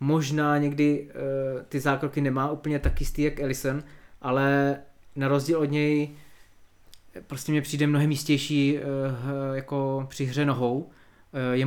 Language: Czech